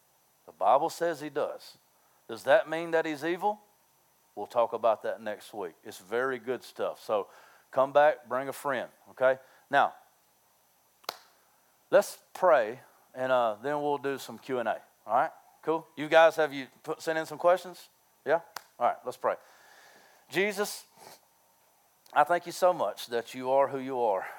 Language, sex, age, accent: English, male, 40-59, American